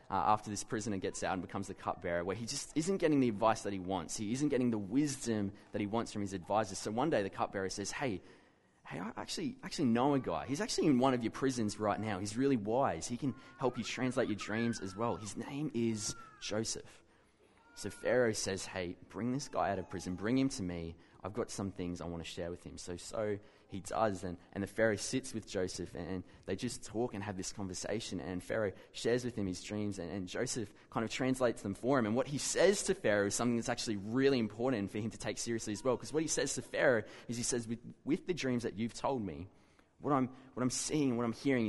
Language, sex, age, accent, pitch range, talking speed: English, male, 20-39, Australian, 100-125 Hz, 250 wpm